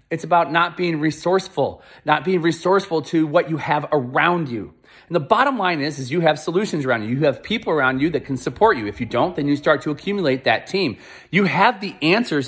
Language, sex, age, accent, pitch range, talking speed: English, male, 30-49, American, 155-225 Hz, 230 wpm